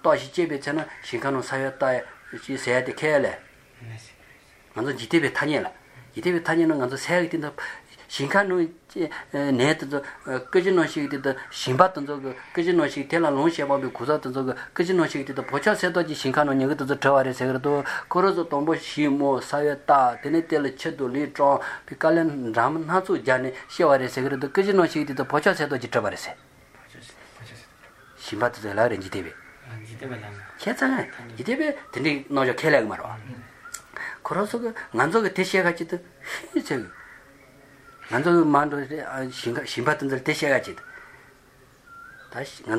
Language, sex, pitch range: English, male, 130-165 Hz